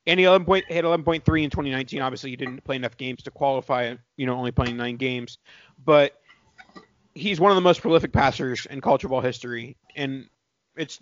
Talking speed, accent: 200 wpm, American